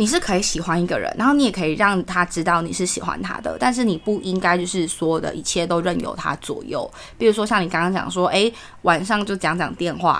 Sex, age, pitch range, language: female, 20-39, 165-205 Hz, Chinese